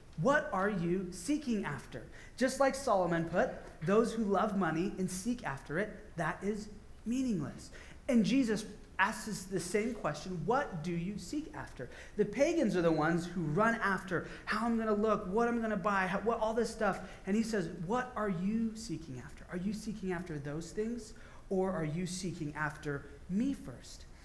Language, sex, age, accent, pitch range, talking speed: English, male, 30-49, American, 160-215 Hz, 180 wpm